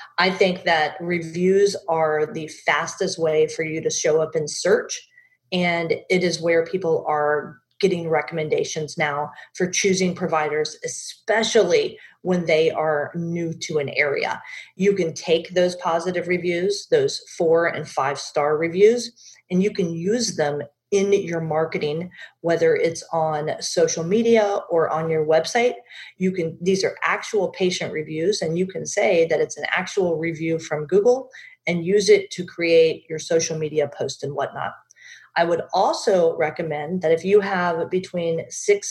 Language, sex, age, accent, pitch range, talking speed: English, female, 40-59, American, 160-200 Hz, 160 wpm